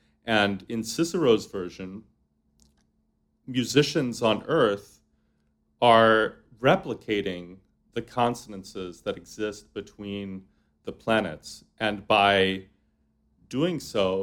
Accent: American